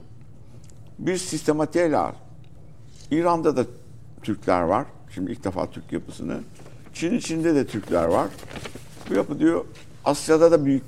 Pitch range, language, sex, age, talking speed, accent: 105-140 Hz, Turkish, male, 60-79, 120 wpm, native